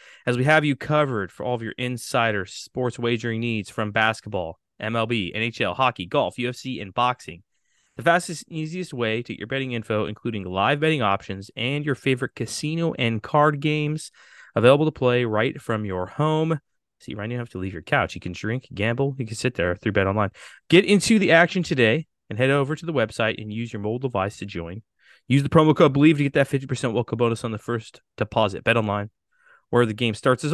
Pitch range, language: 105-140 Hz, English